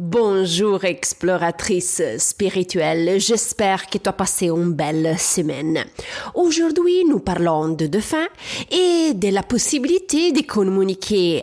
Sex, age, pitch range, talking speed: female, 30-49, 180-285 Hz, 115 wpm